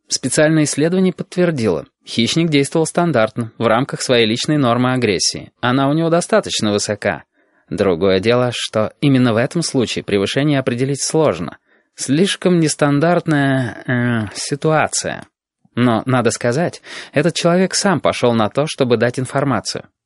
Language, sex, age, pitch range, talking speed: Russian, male, 20-39, 115-155 Hz, 130 wpm